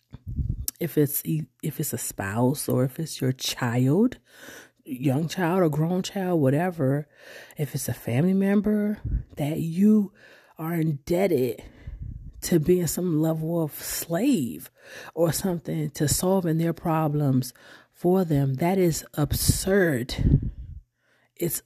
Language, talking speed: English, 120 wpm